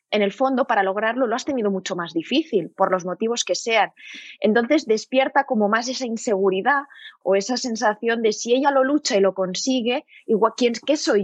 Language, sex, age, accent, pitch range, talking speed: Spanish, female, 20-39, Spanish, 190-255 Hz, 200 wpm